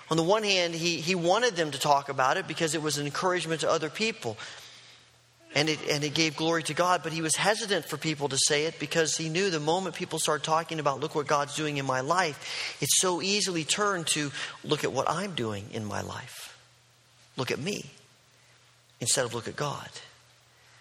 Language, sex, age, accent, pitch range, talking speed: English, male, 40-59, American, 145-180 Hz, 215 wpm